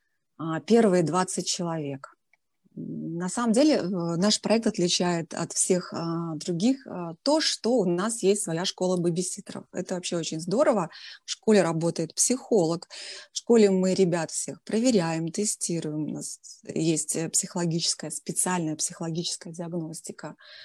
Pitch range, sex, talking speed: 165-205 Hz, female, 120 wpm